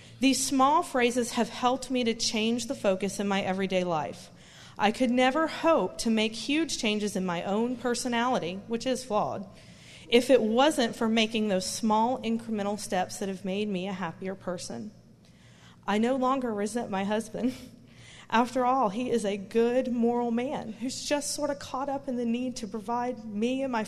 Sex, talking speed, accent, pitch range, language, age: female, 185 wpm, American, 215-260 Hz, English, 40-59